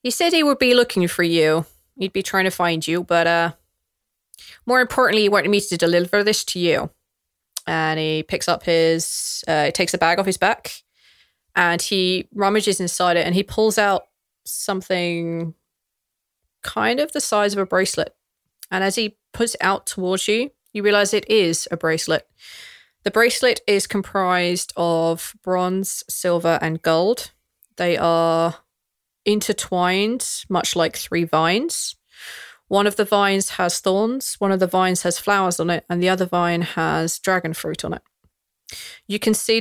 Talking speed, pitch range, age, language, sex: 170 wpm, 170-205 Hz, 20-39, English, female